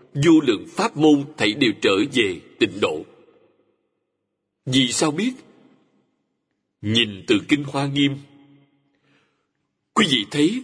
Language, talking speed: Vietnamese, 120 wpm